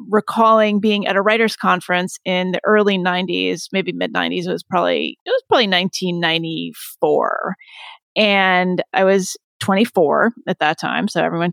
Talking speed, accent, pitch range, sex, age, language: 150 wpm, American, 180-245 Hz, female, 30-49, English